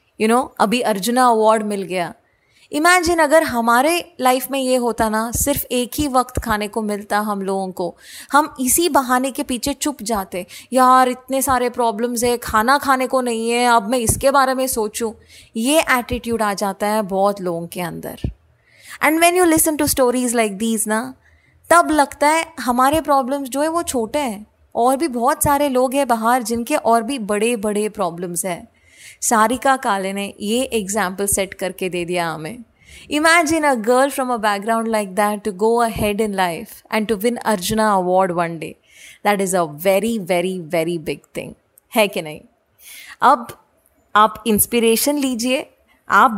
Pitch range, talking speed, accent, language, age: 210-270 Hz, 175 wpm, native, Hindi, 20-39